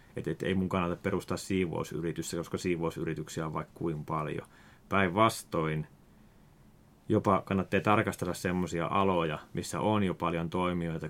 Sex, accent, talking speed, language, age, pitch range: male, native, 130 wpm, Finnish, 30-49, 85-95 Hz